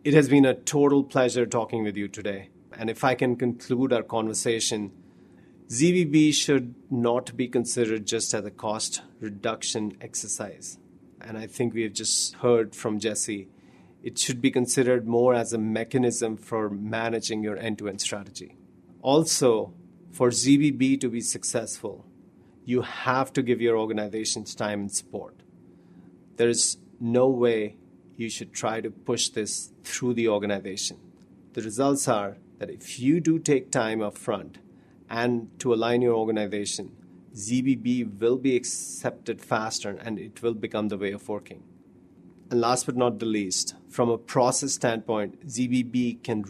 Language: English